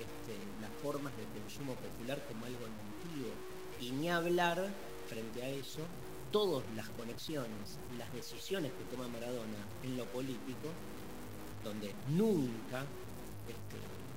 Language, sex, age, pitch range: Spanish, male, 50-69, 110-140 Hz